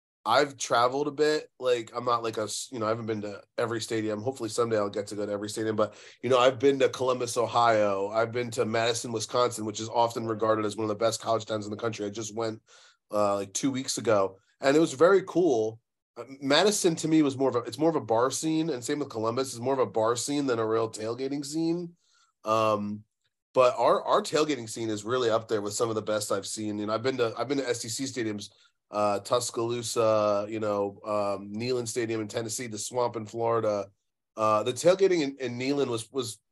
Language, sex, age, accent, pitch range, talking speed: English, male, 30-49, American, 105-130 Hz, 235 wpm